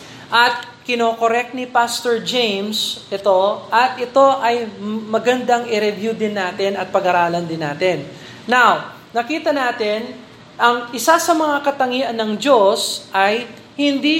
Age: 20-39